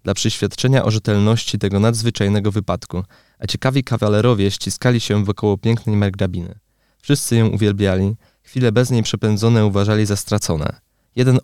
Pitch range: 100-115 Hz